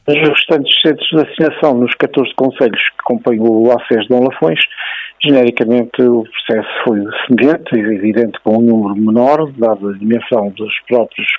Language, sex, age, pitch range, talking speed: Portuguese, male, 50-69, 115-130 Hz, 155 wpm